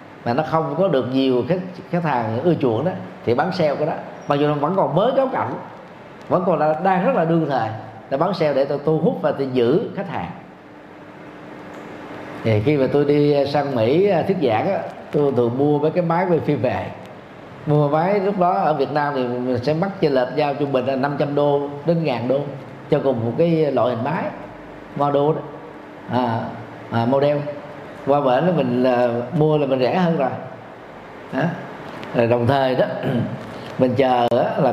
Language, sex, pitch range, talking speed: Vietnamese, male, 130-170 Hz, 190 wpm